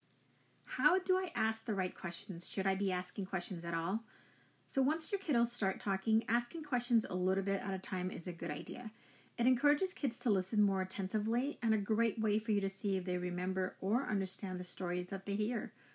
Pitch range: 190-235 Hz